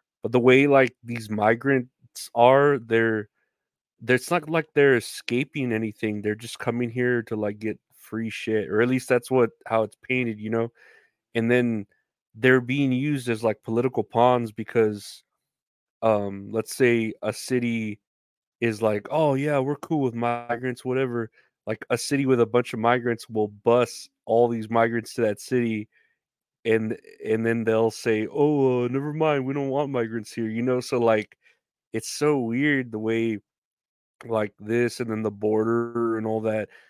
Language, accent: English, American